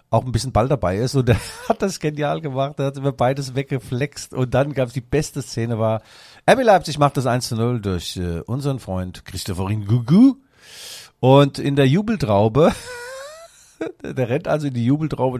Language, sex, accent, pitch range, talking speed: German, male, German, 110-145 Hz, 185 wpm